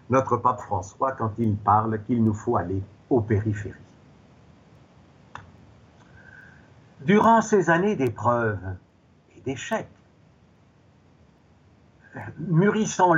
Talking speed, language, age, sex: 85 wpm, French, 60-79, male